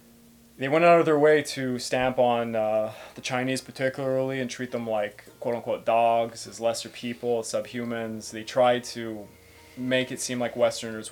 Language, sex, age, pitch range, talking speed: English, male, 20-39, 115-130 Hz, 175 wpm